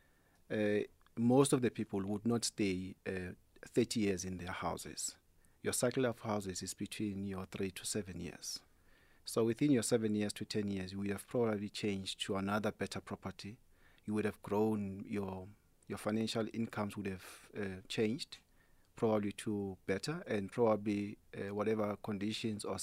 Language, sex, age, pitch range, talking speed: English, male, 40-59, 95-110 Hz, 165 wpm